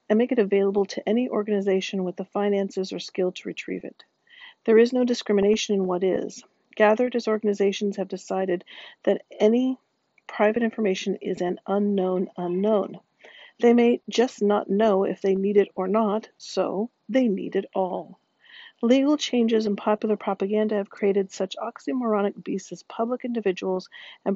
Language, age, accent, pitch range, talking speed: English, 50-69, American, 195-235 Hz, 160 wpm